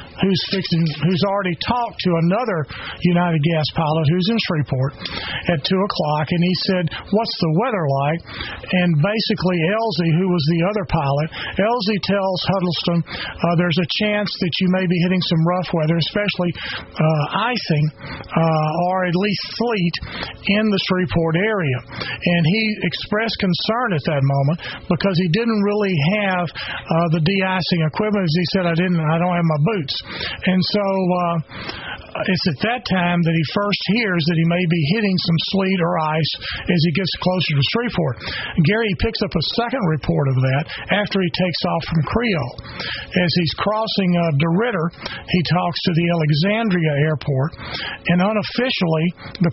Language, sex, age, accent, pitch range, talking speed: English, male, 40-59, American, 160-190 Hz, 165 wpm